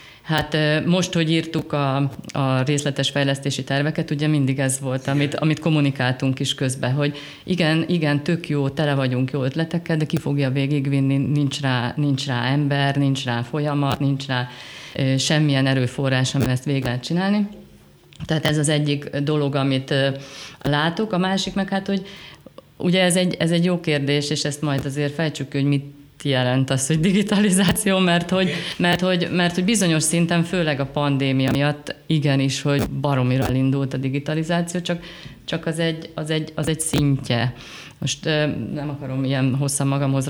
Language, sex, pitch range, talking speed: Hungarian, female, 135-160 Hz, 160 wpm